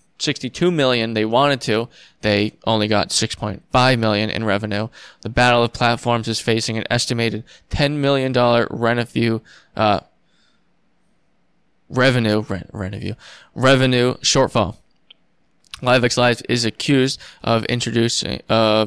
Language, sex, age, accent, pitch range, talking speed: English, male, 20-39, American, 110-125 Hz, 110 wpm